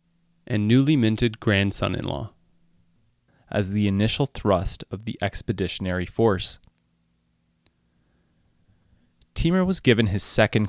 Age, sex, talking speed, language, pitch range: 20-39, male, 95 wpm, English, 85-110 Hz